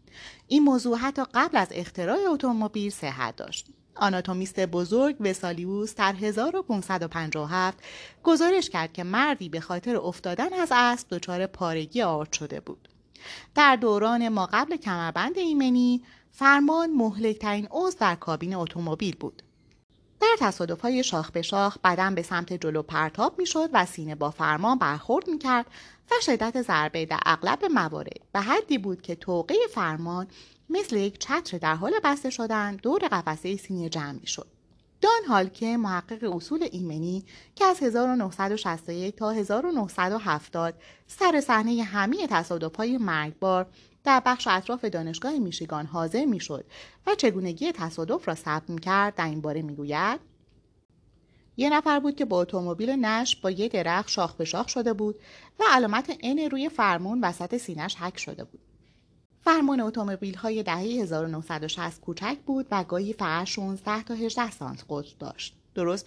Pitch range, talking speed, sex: 175-250 Hz, 145 wpm, female